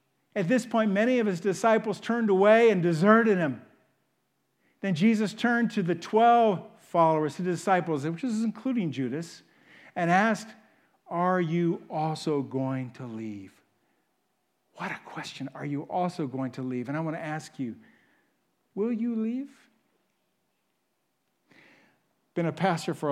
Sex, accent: male, American